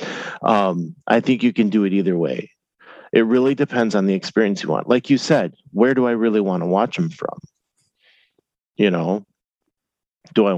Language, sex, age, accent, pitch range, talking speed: English, male, 40-59, American, 90-115 Hz, 185 wpm